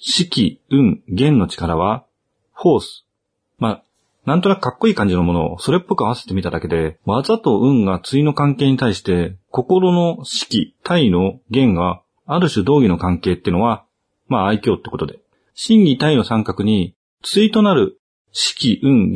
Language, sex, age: Japanese, male, 40-59